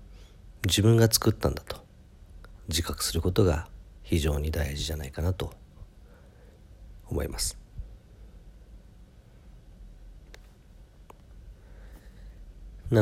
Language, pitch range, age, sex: Japanese, 80-100 Hz, 40-59, male